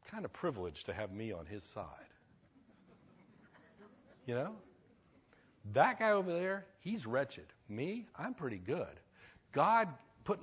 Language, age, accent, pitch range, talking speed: English, 60-79, American, 100-165 Hz, 130 wpm